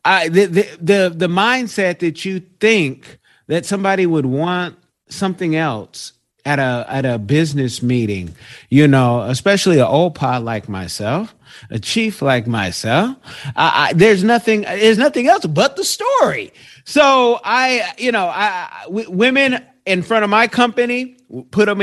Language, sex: English, male